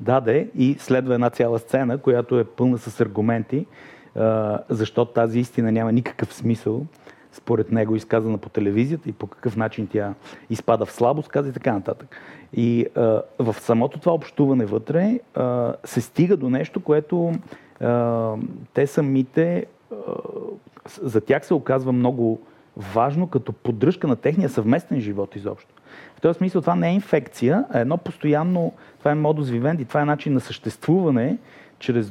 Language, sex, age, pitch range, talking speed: Bulgarian, male, 30-49, 115-150 Hz, 150 wpm